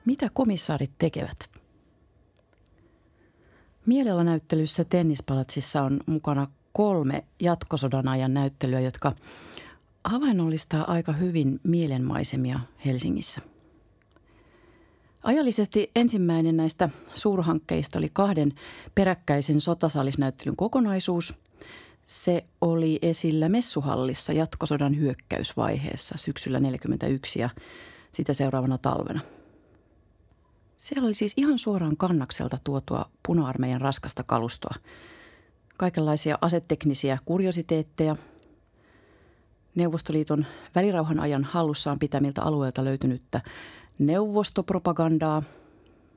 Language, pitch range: Finnish, 130-170 Hz